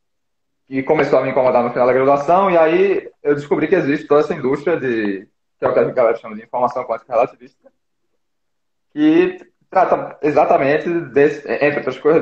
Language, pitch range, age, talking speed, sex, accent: Portuguese, 115-170 Hz, 20-39, 175 wpm, male, Brazilian